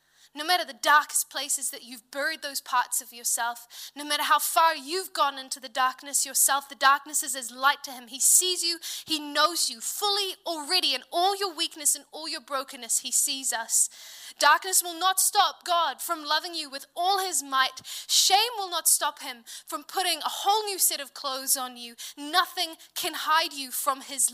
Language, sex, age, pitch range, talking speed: English, female, 10-29, 250-320 Hz, 200 wpm